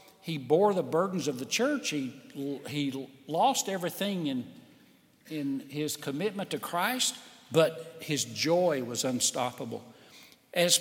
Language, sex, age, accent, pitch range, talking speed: English, male, 60-79, American, 155-245 Hz, 130 wpm